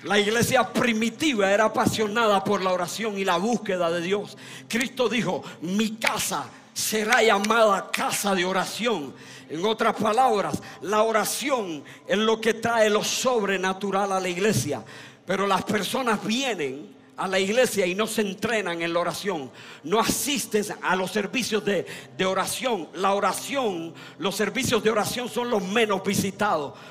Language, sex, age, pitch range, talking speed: Spanish, male, 50-69, 190-225 Hz, 150 wpm